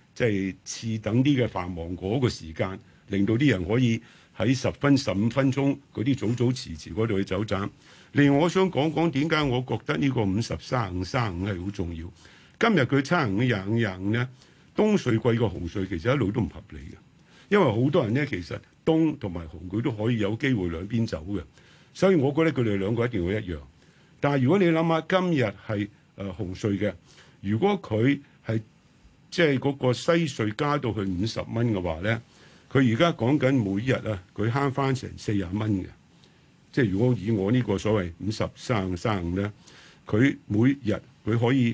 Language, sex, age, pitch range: Chinese, male, 50-69, 100-140 Hz